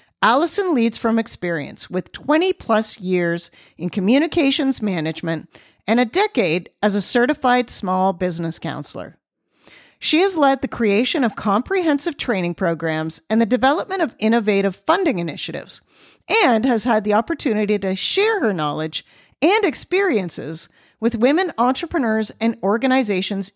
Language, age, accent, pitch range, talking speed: English, 50-69, American, 185-280 Hz, 130 wpm